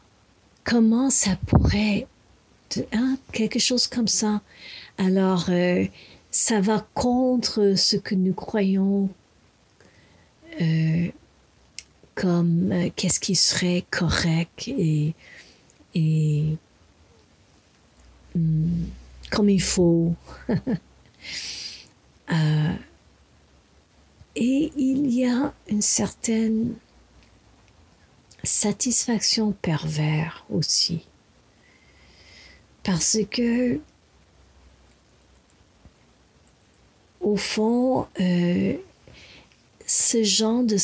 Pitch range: 160-220 Hz